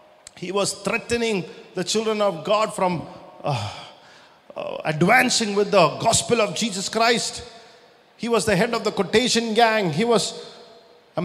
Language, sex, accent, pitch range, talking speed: English, male, Indian, 205-235 Hz, 150 wpm